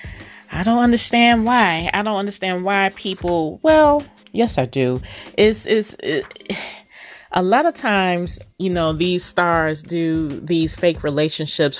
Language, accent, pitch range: English, American, 130-165 Hz